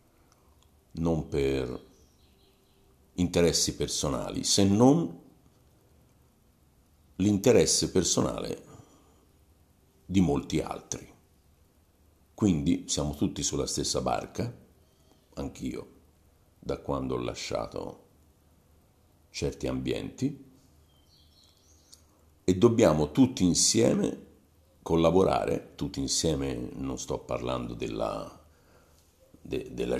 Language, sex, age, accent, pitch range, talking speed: Italian, male, 50-69, native, 70-85 Hz, 70 wpm